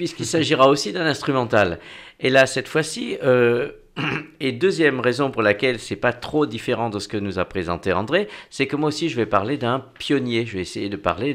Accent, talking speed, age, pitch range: French, 215 wpm, 50-69, 105-145 Hz